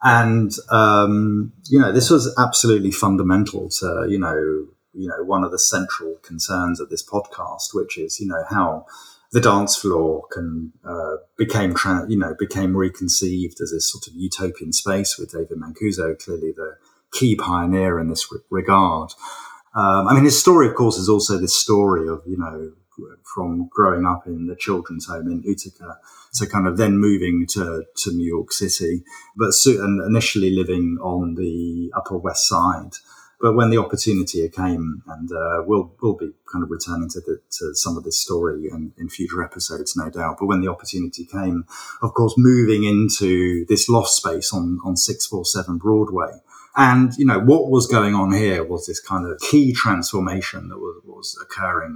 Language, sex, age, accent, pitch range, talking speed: English, male, 30-49, British, 90-115 Hz, 180 wpm